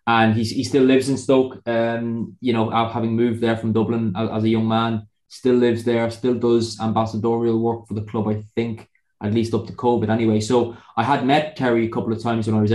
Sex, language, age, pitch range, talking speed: male, English, 20-39, 105-120 Hz, 235 wpm